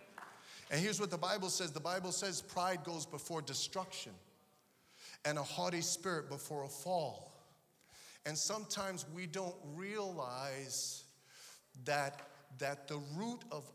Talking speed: 130 wpm